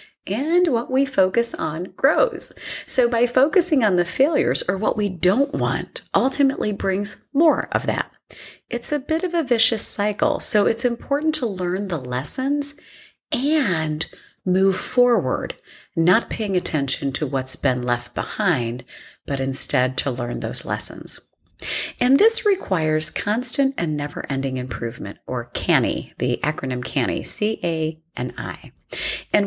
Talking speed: 145 wpm